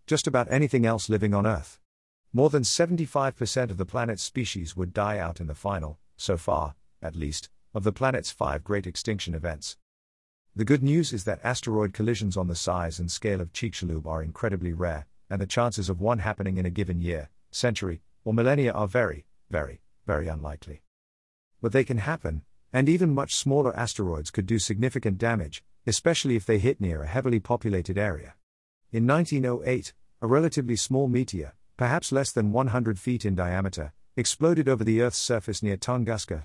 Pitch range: 85-120 Hz